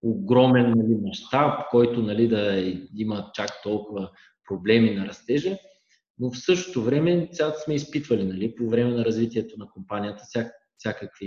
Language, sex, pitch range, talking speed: Bulgarian, male, 105-125 Hz, 150 wpm